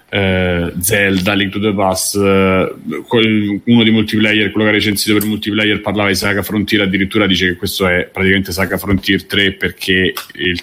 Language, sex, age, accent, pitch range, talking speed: Italian, male, 30-49, native, 95-110 Hz, 175 wpm